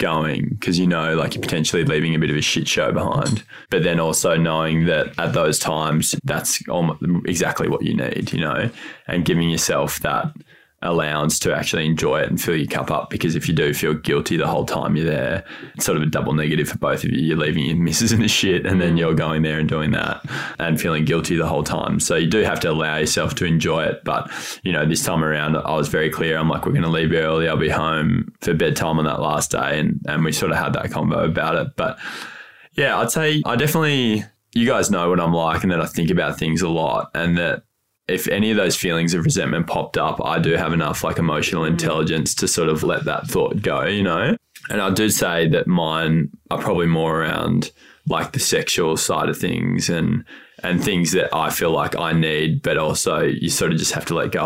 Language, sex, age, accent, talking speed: English, male, 20-39, Australian, 235 wpm